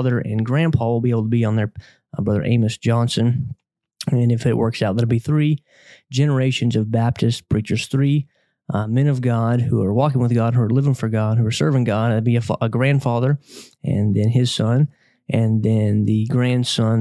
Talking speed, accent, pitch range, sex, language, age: 205 wpm, American, 115-130 Hz, male, English, 30-49